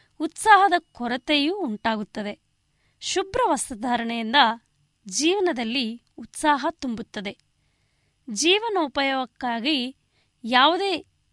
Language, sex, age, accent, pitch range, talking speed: Kannada, female, 20-39, native, 235-320 Hz, 55 wpm